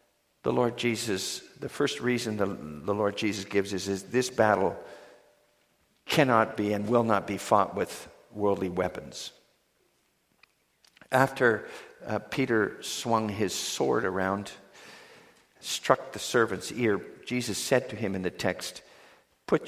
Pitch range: 100-135 Hz